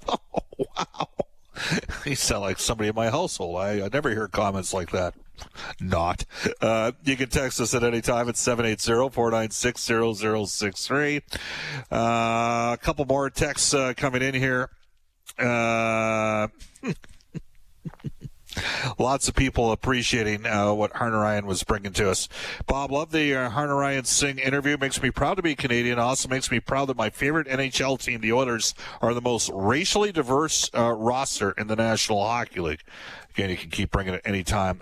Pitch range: 105-140 Hz